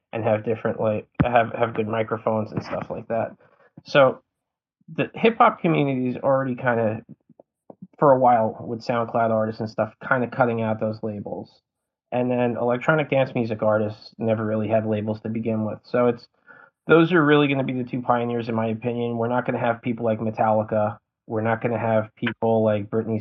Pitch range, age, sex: 110-120 Hz, 20-39, male